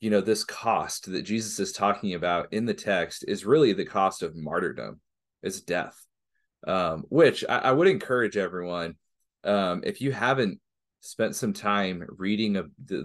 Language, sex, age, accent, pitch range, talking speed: English, male, 30-49, American, 85-130 Hz, 170 wpm